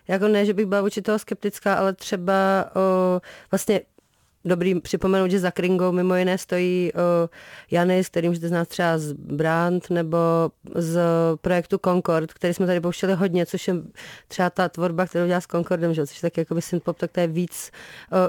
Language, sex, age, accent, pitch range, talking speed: Czech, female, 30-49, native, 175-200 Hz, 185 wpm